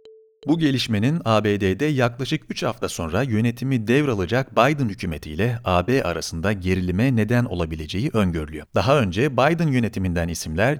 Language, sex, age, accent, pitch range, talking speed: Turkish, male, 40-59, native, 90-135 Hz, 120 wpm